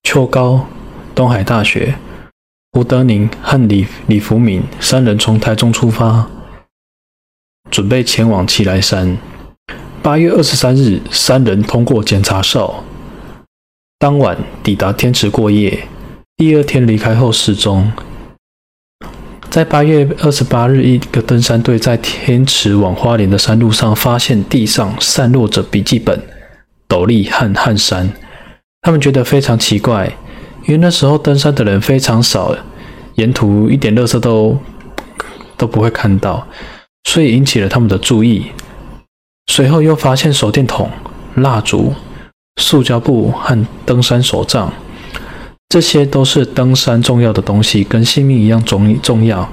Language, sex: Chinese, male